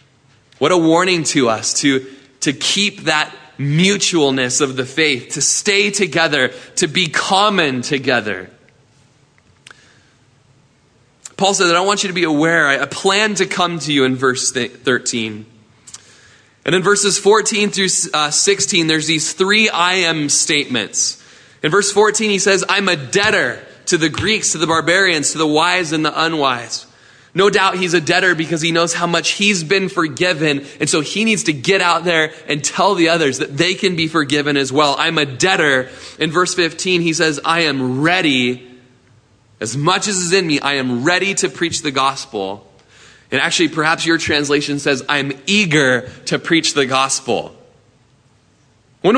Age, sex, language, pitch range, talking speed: 20-39, male, English, 135-180 Hz, 170 wpm